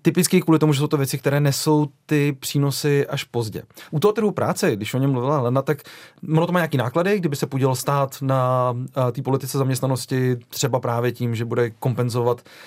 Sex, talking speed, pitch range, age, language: male, 200 wpm, 125-150 Hz, 30-49, Czech